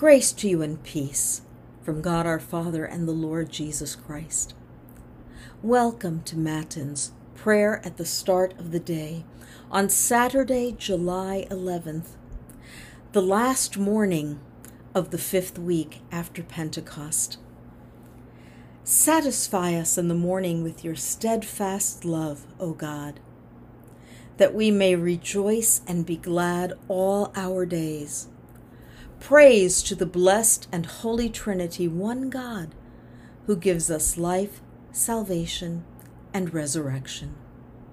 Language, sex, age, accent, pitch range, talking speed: English, female, 50-69, American, 160-215 Hz, 115 wpm